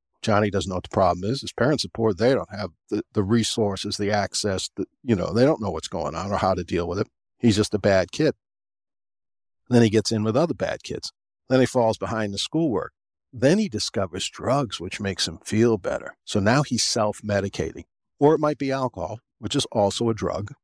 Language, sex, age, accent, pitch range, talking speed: English, male, 50-69, American, 105-130 Hz, 220 wpm